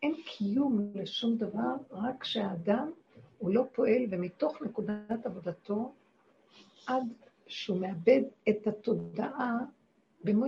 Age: 60-79